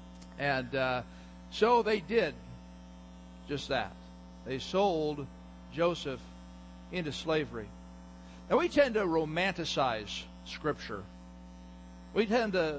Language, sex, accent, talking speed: English, male, American, 100 wpm